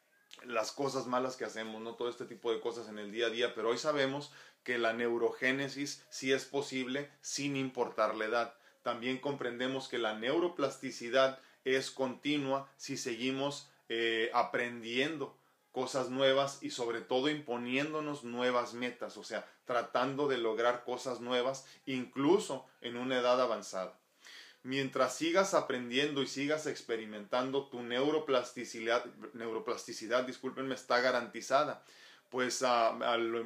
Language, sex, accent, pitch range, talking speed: Spanish, male, Mexican, 120-135 Hz, 130 wpm